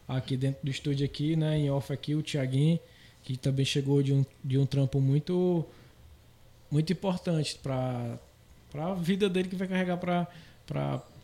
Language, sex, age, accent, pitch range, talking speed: Portuguese, male, 20-39, Brazilian, 135-160 Hz, 165 wpm